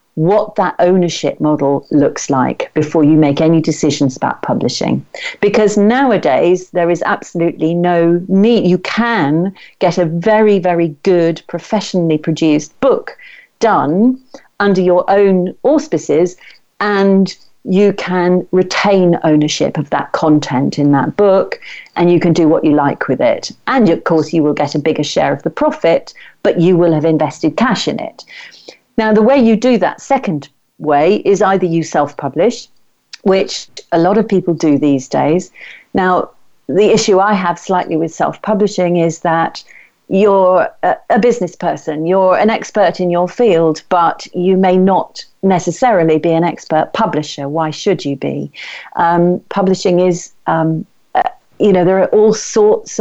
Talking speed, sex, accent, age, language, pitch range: 160 wpm, female, British, 40-59, English, 165-205 Hz